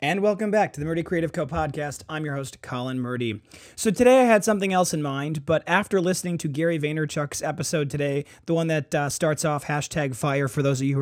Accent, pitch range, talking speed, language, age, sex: American, 135-165 Hz, 235 wpm, English, 30-49, male